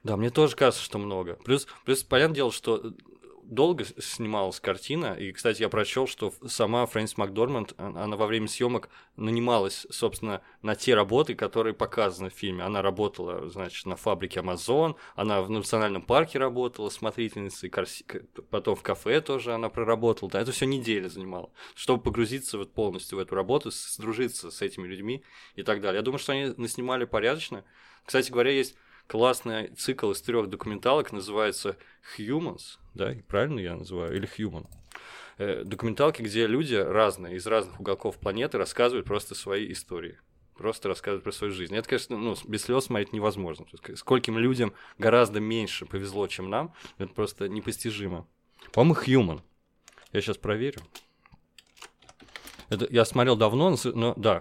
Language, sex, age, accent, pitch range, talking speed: Russian, male, 20-39, native, 100-120 Hz, 155 wpm